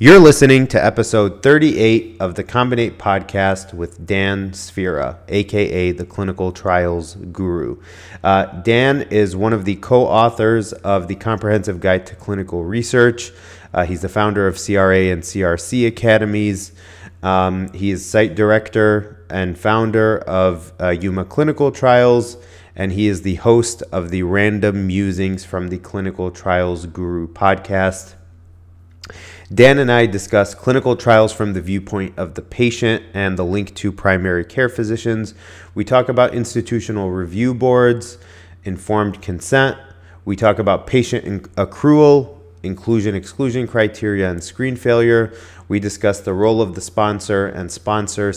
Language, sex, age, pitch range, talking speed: English, male, 30-49, 90-110 Hz, 140 wpm